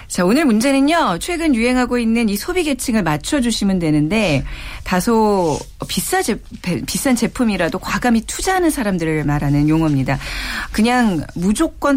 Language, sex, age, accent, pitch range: Korean, female, 40-59, native, 165-255 Hz